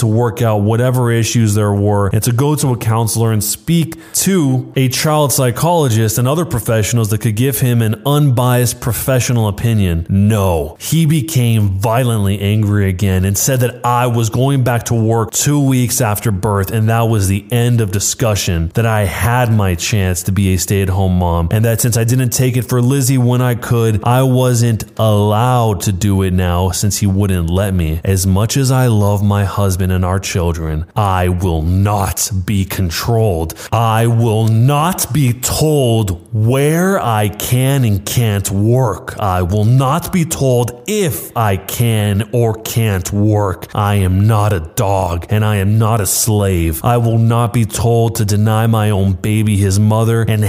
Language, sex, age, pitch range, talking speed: English, male, 20-39, 100-120 Hz, 180 wpm